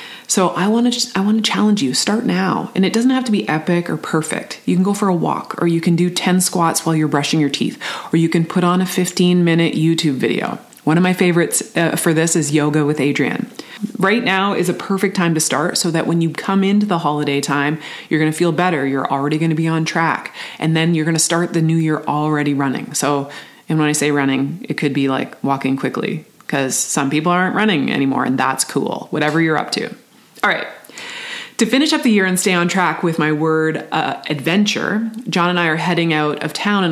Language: English